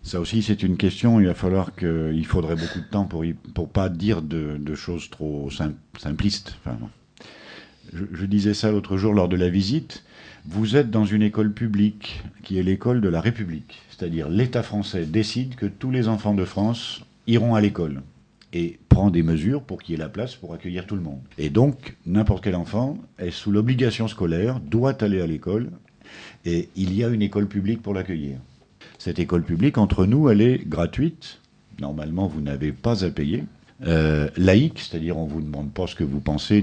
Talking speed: 205 wpm